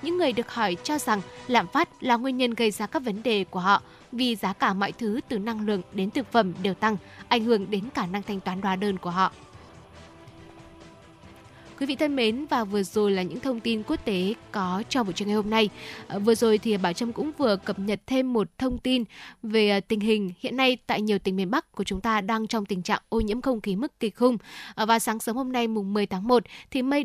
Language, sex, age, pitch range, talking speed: Vietnamese, female, 10-29, 200-250 Hz, 245 wpm